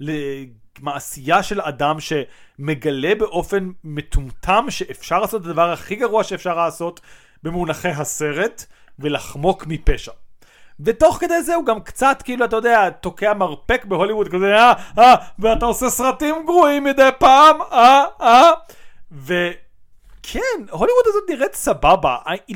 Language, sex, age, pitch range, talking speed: Hebrew, male, 30-49, 150-210 Hz, 135 wpm